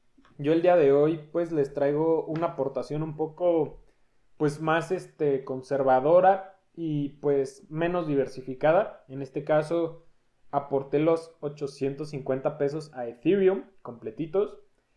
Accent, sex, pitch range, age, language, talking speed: Mexican, male, 135-165 Hz, 20-39, Spanish, 120 wpm